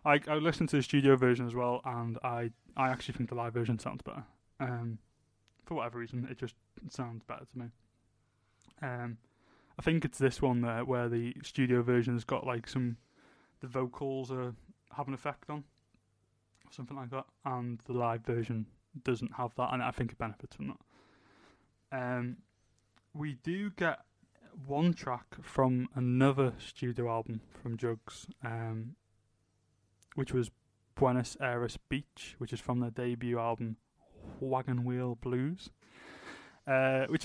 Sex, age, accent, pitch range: male, 20-39, British, 115-135 Hz